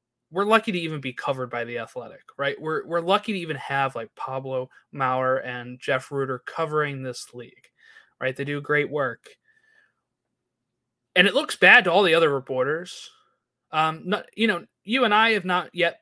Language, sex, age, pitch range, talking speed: English, male, 20-39, 140-200 Hz, 185 wpm